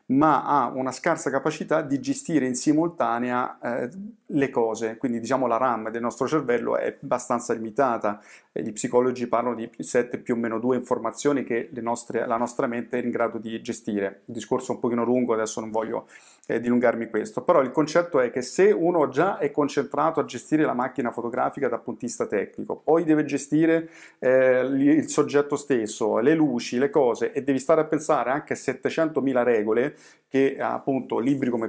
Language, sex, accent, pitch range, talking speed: Italian, male, native, 120-145 Hz, 185 wpm